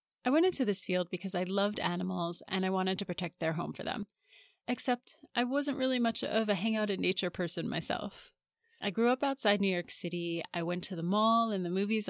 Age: 30-49